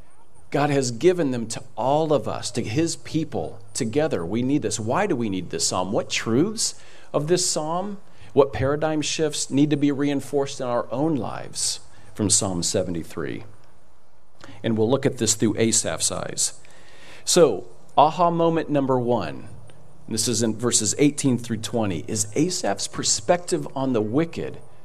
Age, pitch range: 40-59, 115-150 Hz